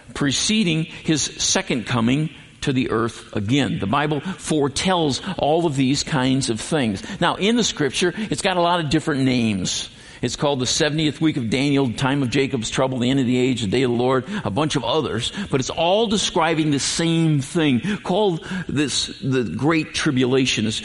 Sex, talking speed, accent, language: male, 190 wpm, American, English